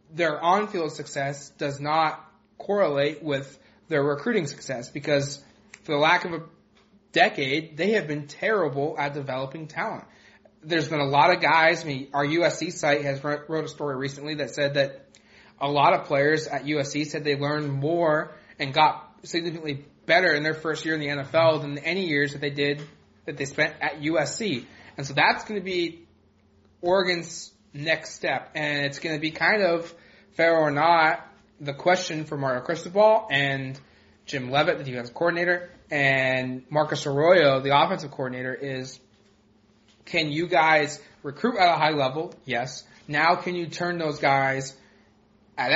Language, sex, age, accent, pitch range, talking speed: English, male, 20-39, American, 140-165 Hz, 170 wpm